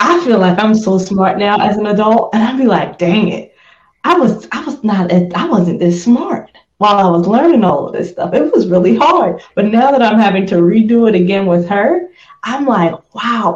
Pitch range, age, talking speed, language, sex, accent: 175-230 Hz, 20-39, 225 wpm, English, female, American